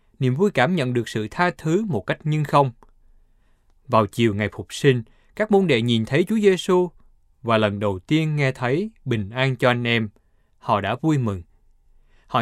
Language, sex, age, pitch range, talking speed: Vietnamese, male, 20-39, 105-155 Hz, 195 wpm